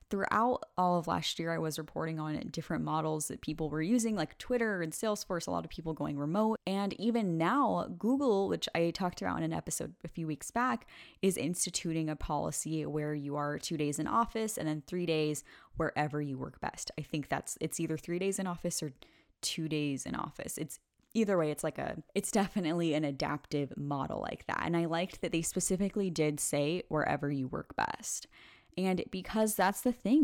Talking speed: 205 wpm